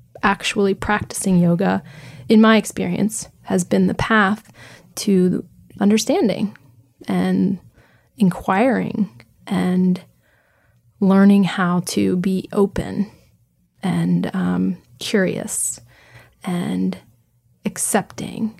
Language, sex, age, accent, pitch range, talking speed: English, female, 20-39, American, 175-210 Hz, 80 wpm